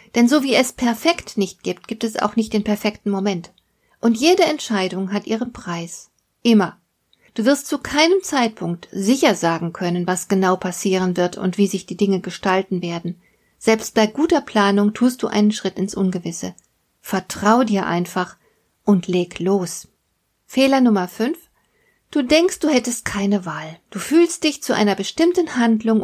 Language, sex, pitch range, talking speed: German, female, 190-245 Hz, 165 wpm